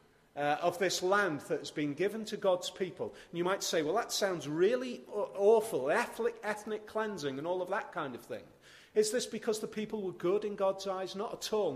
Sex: male